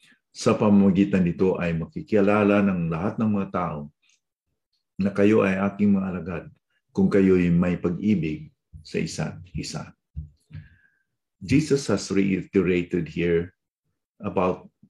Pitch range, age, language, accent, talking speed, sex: 85-100 Hz, 50-69, English, Filipino, 110 wpm, male